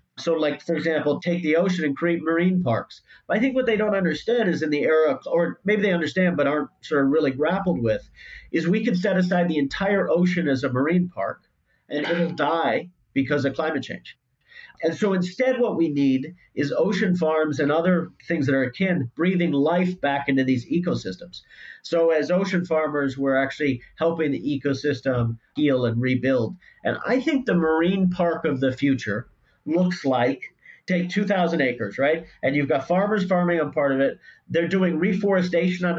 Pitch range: 140-180 Hz